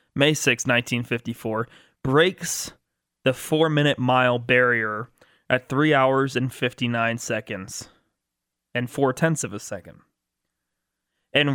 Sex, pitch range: male, 115-145 Hz